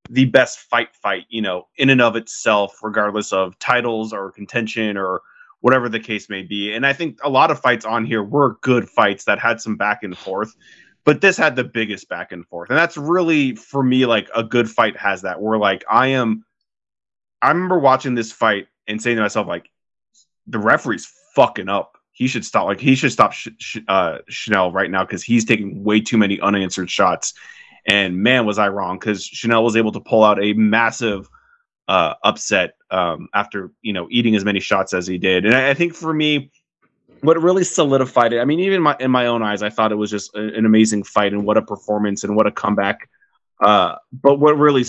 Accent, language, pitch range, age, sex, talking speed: American, English, 105-135 Hz, 20-39, male, 215 wpm